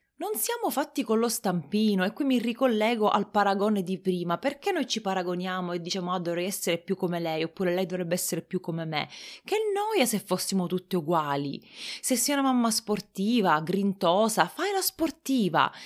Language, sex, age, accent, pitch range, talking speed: Italian, female, 30-49, native, 180-240 Hz, 180 wpm